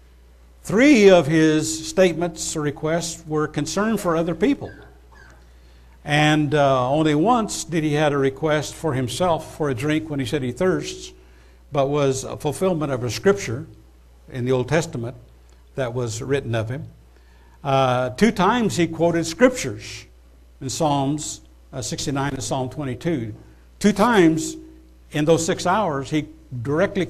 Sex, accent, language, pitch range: male, American, English, 115-165 Hz